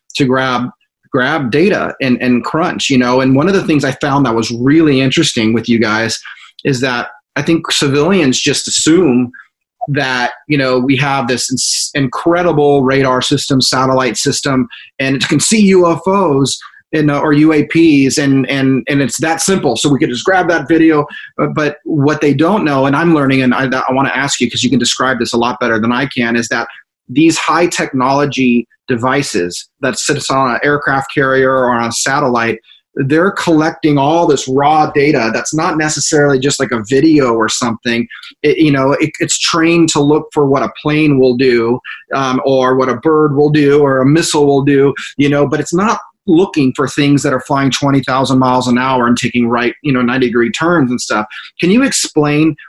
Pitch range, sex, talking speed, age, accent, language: 125-150 Hz, male, 200 wpm, 30-49, American, English